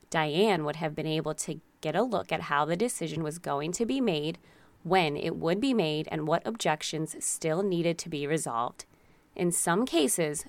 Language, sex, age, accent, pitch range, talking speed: English, female, 20-39, American, 155-205 Hz, 195 wpm